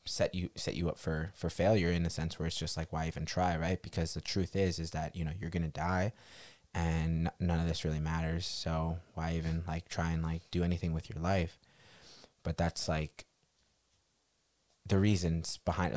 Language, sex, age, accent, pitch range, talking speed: English, male, 20-39, American, 80-90 Hz, 205 wpm